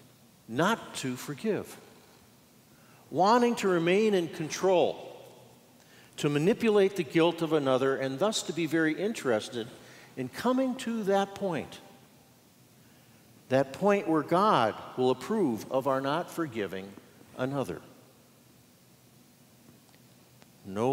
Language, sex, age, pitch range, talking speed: English, male, 50-69, 130-190 Hz, 105 wpm